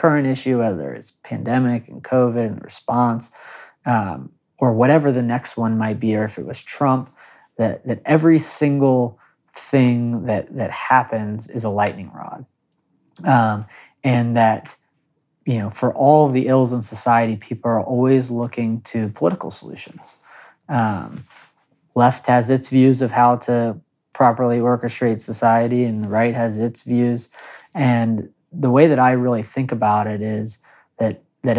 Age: 30-49